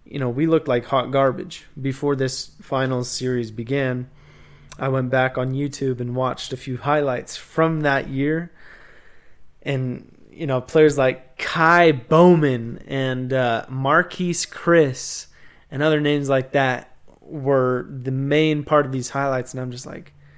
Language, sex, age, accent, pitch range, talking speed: English, male, 20-39, American, 130-150 Hz, 155 wpm